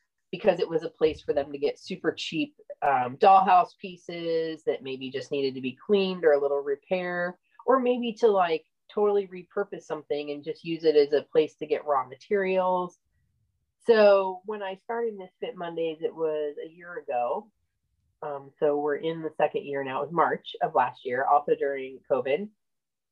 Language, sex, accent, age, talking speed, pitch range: English, female, American, 30-49, 185 wpm, 150-210 Hz